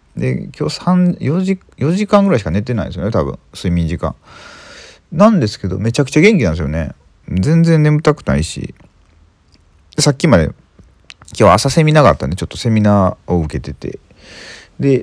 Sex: male